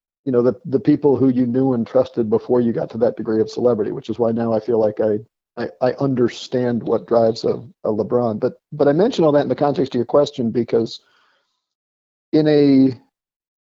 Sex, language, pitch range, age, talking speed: male, English, 120-140 Hz, 40-59, 215 wpm